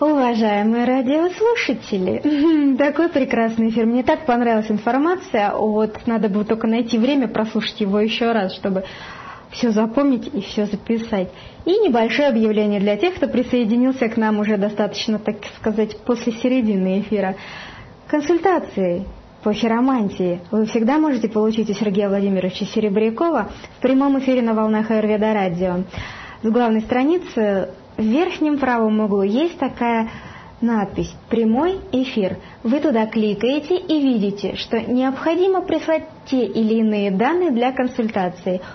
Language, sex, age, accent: Russian, female, 20-39, native